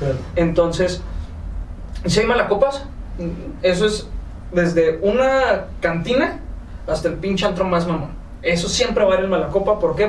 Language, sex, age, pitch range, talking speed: Spanish, male, 30-49, 170-215 Hz, 150 wpm